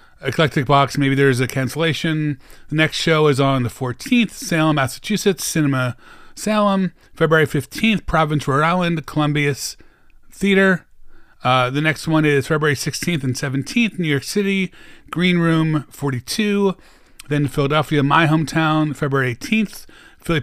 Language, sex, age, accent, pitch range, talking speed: English, male, 30-49, American, 125-155 Hz, 135 wpm